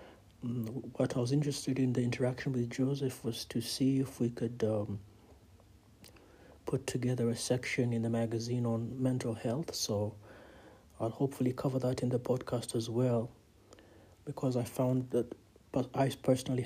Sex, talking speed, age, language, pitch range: male, 155 wpm, 60-79, English, 110-130 Hz